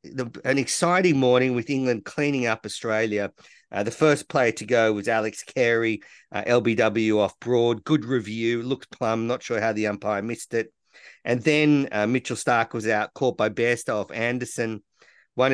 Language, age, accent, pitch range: English, 50-69, Australian, 110-135 Hz